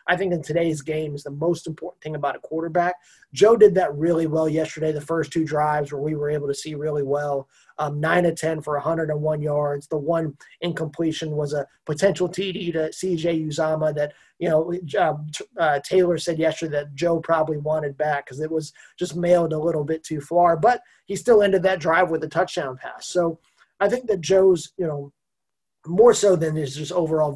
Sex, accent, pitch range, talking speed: male, American, 150-175 Hz, 205 wpm